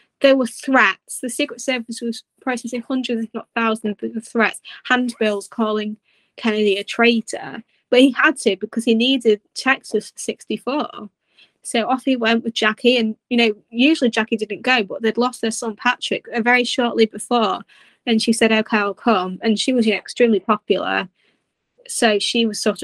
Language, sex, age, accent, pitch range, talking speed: English, female, 20-39, British, 210-235 Hz, 175 wpm